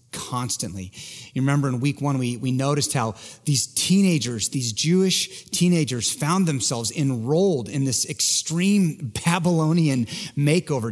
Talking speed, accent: 125 wpm, American